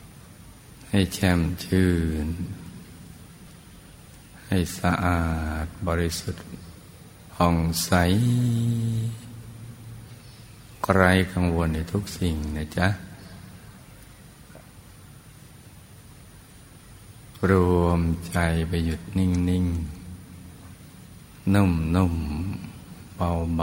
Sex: male